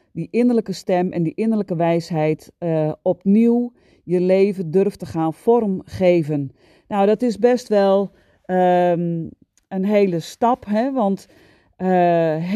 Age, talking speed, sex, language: 40-59, 120 wpm, female, Dutch